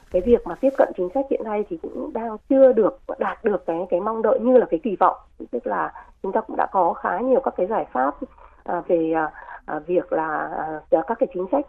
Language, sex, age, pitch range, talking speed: Vietnamese, female, 20-39, 175-235 Hz, 230 wpm